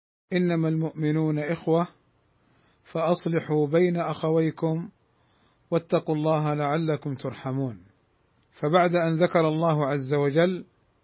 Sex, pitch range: male, 145-170 Hz